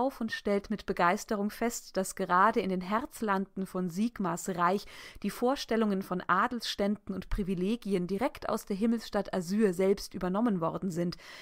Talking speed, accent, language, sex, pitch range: 145 wpm, German, German, female, 195-235 Hz